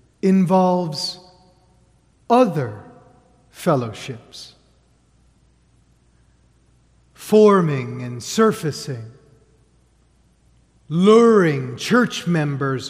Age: 40-59